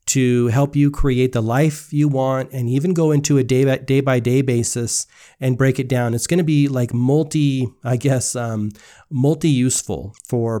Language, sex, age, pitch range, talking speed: English, male, 30-49, 120-140 Hz, 200 wpm